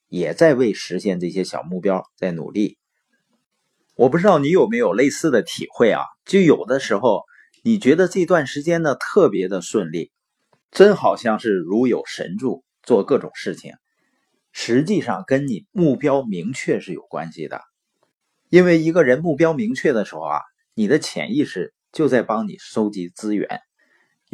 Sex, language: male, Chinese